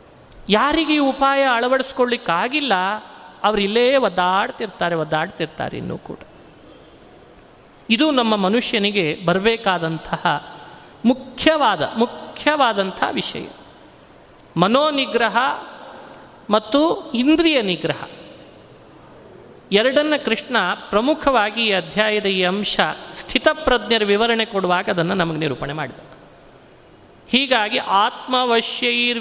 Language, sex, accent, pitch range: Kannada, male, native, 190-250 Hz